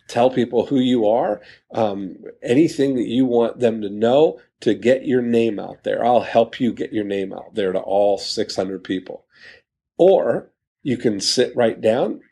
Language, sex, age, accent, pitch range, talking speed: English, male, 40-59, American, 105-130 Hz, 180 wpm